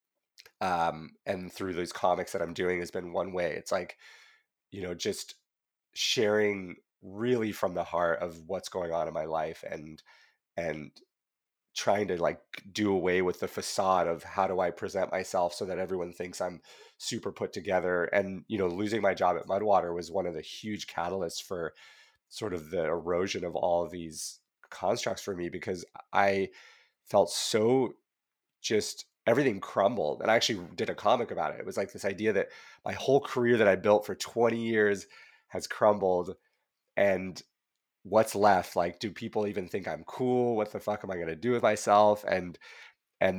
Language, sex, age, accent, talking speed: English, male, 30-49, American, 185 wpm